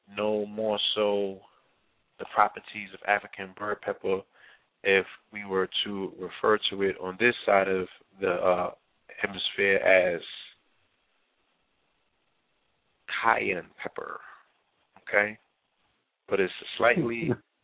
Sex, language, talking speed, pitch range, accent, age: male, English, 100 wpm, 100-110 Hz, American, 30-49